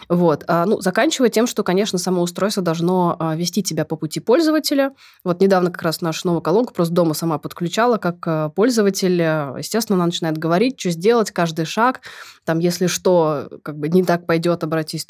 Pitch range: 170-205 Hz